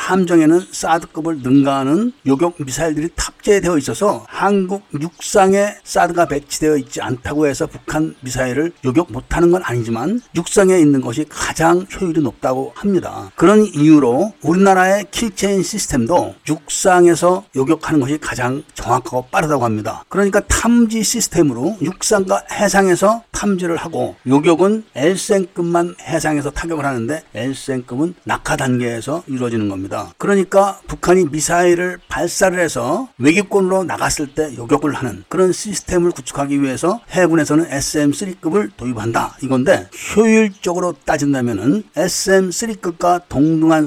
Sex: male